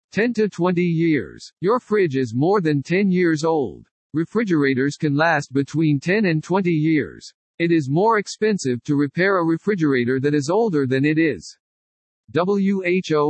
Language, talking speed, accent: English, 160 wpm, American